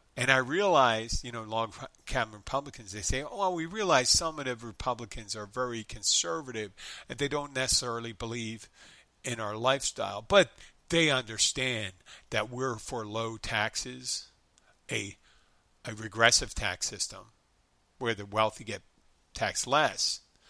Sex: male